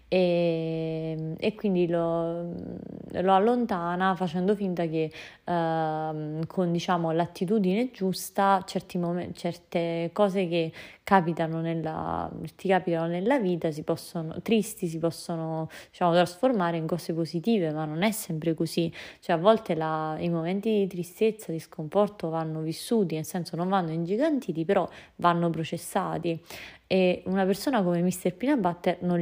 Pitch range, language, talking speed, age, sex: 165-190 Hz, Italian, 140 wpm, 20-39, female